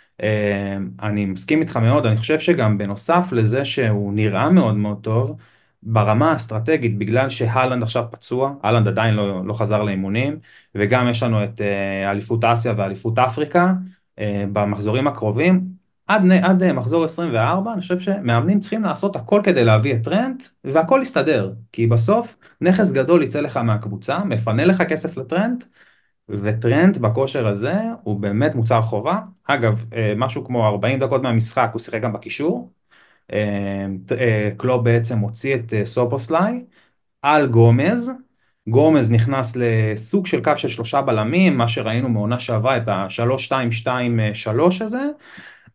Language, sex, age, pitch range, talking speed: Hebrew, male, 30-49, 105-155 Hz, 140 wpm